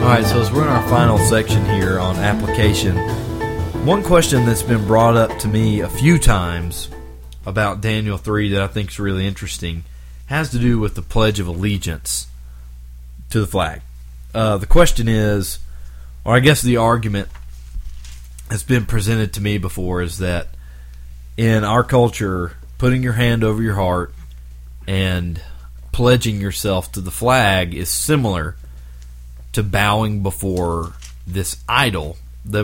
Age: 30-49